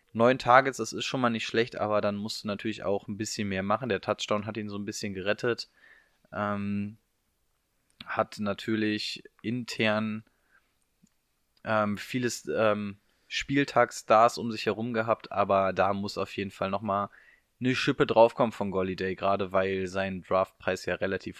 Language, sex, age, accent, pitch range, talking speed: German, male, 20-39, German, 100-125 Hz, 155 wpm